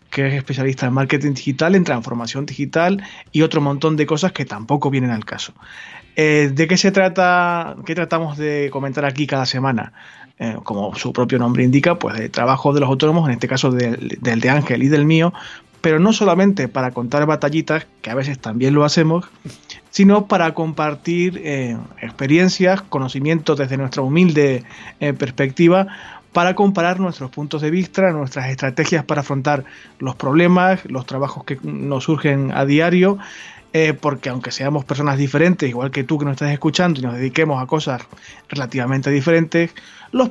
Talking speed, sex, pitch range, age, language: 175 wpm, male, 135-170 Hz, 30-49, Spanish